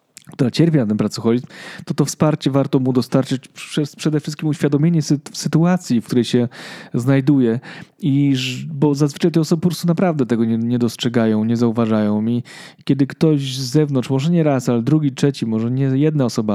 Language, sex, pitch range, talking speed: Polish, male, 120-145 Hz, 180 wpm